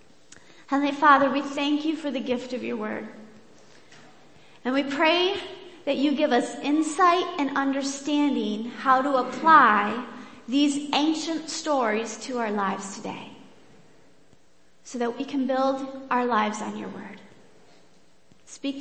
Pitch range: 235-300 Hz